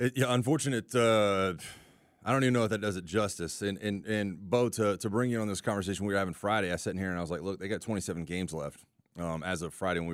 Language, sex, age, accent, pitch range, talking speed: English, male, 30-49, American, 95-120 Hz, 280 wpm